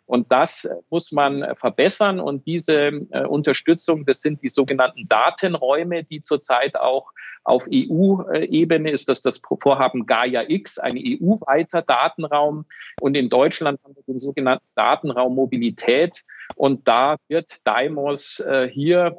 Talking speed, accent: 130 wpm, German